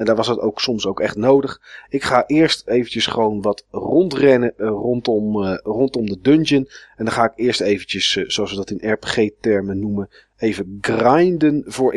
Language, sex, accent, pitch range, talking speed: Dutch, male, Dutch, 110-150 Hz, 175 wpm